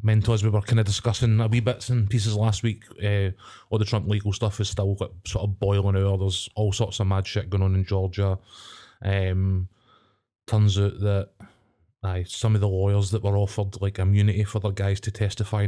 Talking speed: 215 wpm